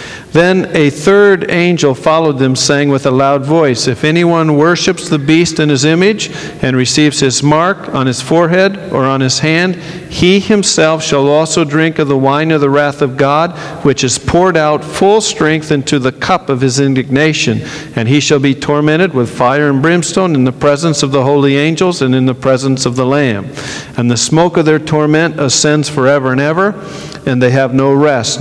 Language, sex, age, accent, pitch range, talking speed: English, male, 50-69, American, 130-165 Hz, 195 wpm